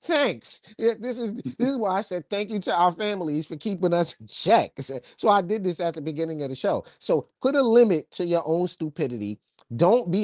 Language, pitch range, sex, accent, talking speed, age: English, 130-170 Hz, male, American, 225 wpm, 30-49